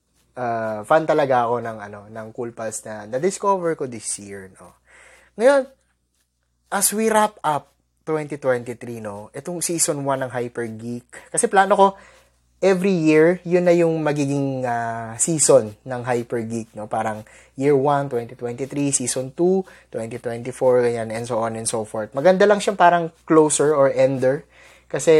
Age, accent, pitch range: 20-39, native, 115-155 Hz